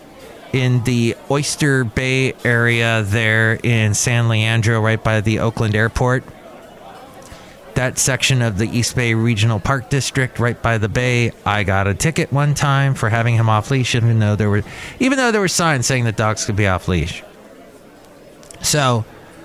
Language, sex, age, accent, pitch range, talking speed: English, male, 30-49, American, 110-140 Hz, 165 wpm